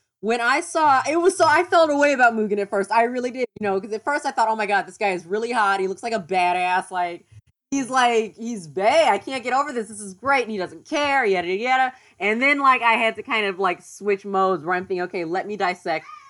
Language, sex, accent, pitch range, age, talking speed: English, female, American, 185-245 Hz, 20-39, 275 wpm